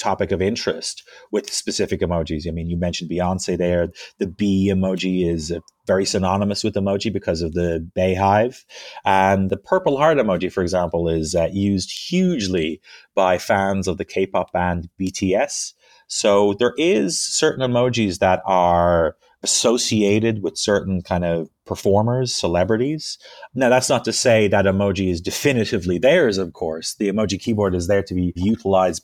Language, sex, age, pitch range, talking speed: English, male, 30-49, 90-110 Hz, 155 wpm